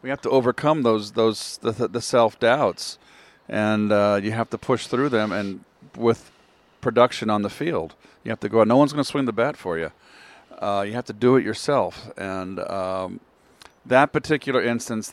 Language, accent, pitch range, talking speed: English, American, 100-120 Hz, 200 wpm